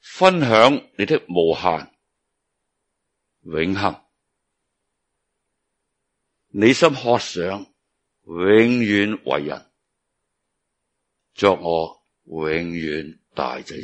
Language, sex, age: Chinese, male, 60-79